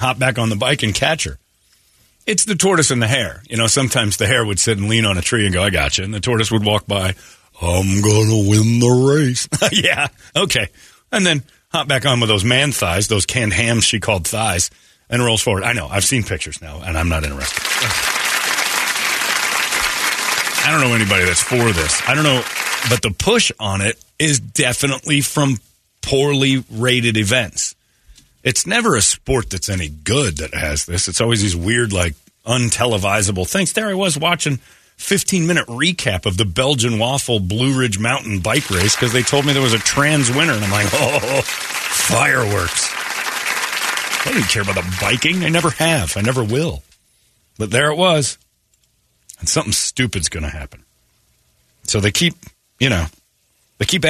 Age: 40-59